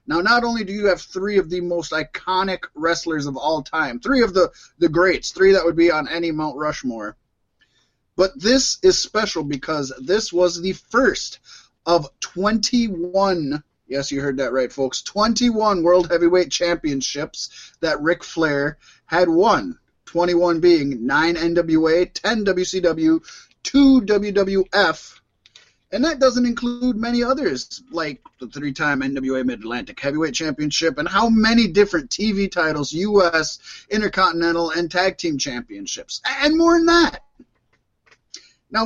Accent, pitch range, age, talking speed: American, 160-215 Hz, 30-49, 140 wpm